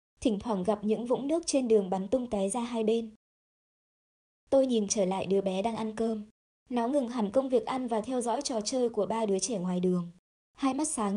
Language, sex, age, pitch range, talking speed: Vietnamese, male, 20-39, 200-250 Hz, 230 wpm